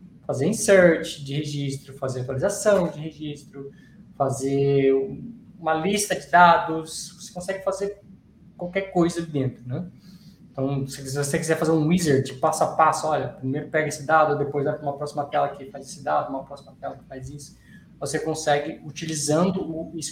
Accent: Brazilian